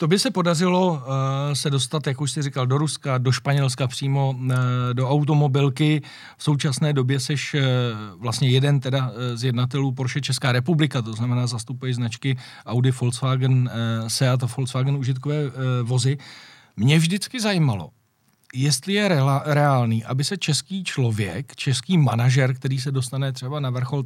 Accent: native